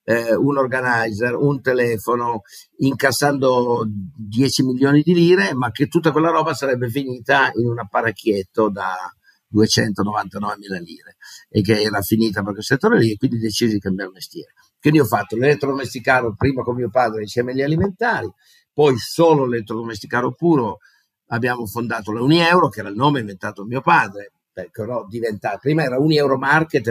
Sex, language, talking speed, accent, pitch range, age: male, Italian, 155 wpm, native, 105-135 Hz, 50-69